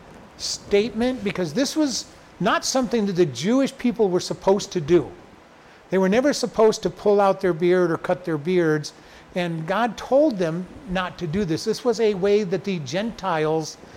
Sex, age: male, 50-69